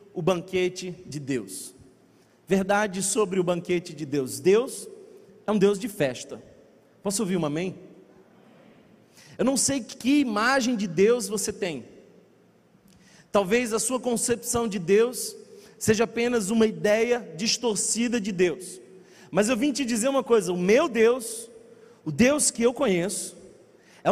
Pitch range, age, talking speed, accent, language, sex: 210-255 Hz, 40-59, 145 wpm, Brazilian, Portuguese, male